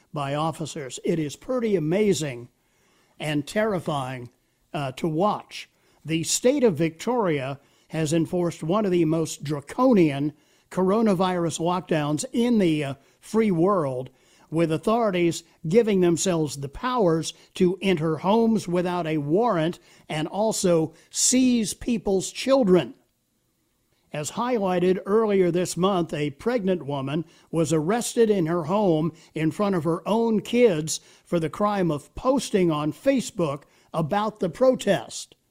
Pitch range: 155-205 Hz